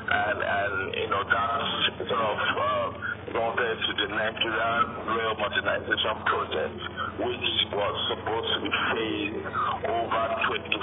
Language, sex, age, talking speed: English, male, 50-69, 125 wpm